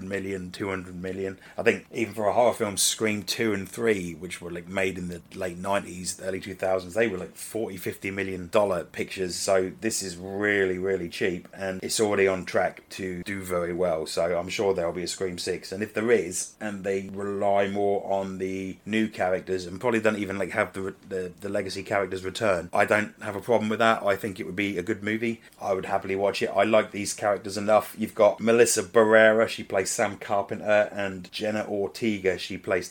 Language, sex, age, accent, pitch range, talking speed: English, male, 30-49, British, 95-105 Hz, 215 wpm